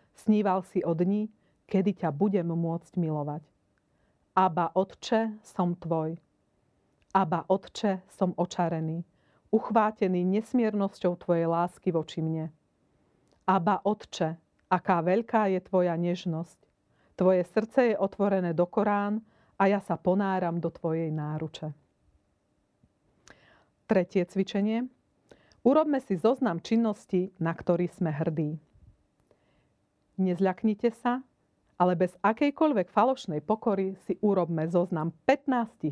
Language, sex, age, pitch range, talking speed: Slovak, female, 40-59, 165-205 Hz, 105 wpm